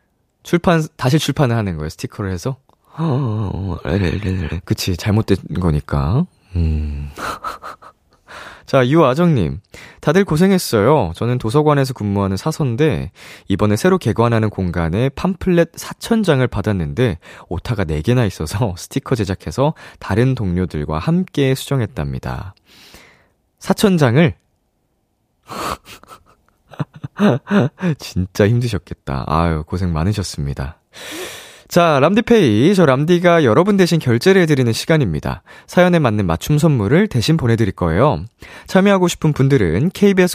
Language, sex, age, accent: Korean, male, 20-39, native